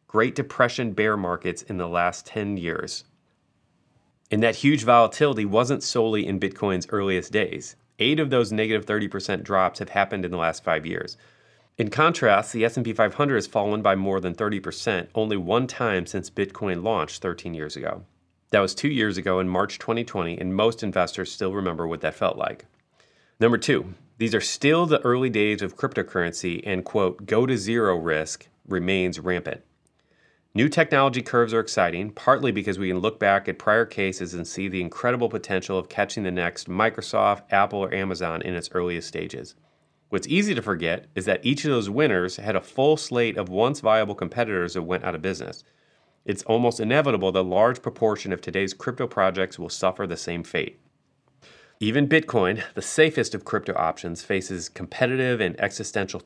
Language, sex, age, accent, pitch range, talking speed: English, male, 30-49, American, 90-115 Hz, 175 wpm